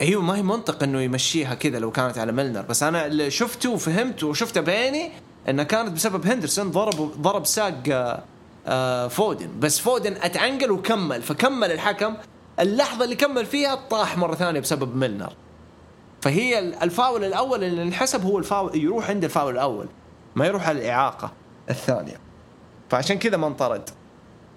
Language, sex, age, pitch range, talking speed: English, male, 20-39, 130-200 Hz, 140 wpm